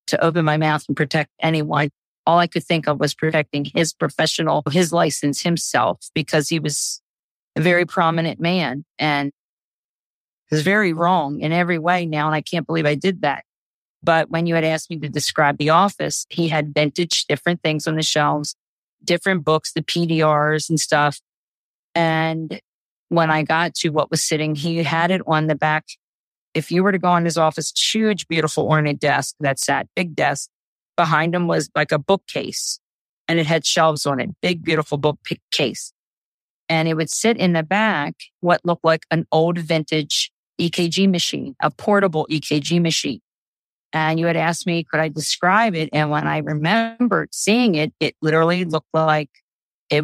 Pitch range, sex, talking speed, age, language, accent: 150-170 Hz, female, 180 wpm, 40-59, English, American